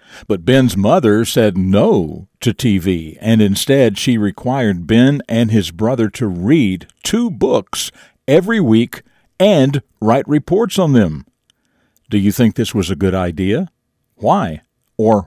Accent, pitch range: American, 105-145 Hz